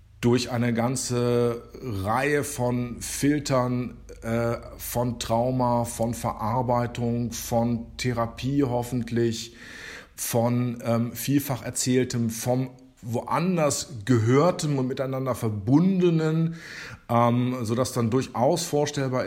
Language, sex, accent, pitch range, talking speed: German, male, German, 115-140 Hz, 95 wpm